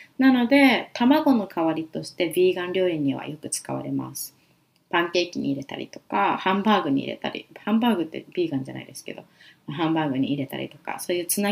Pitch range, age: 160-225 Hz, 20-39